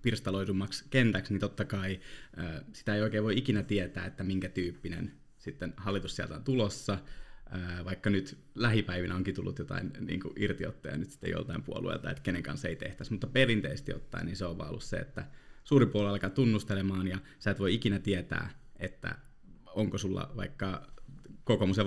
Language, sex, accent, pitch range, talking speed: Finnish, male, native, 95-120 Hz, 165 wpm